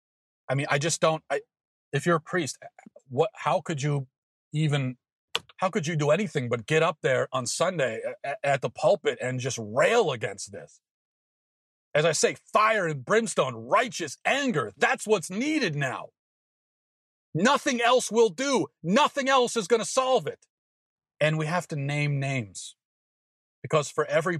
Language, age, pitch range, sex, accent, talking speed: English, 40-59, 125-155 Hz, male, American, 160 wpm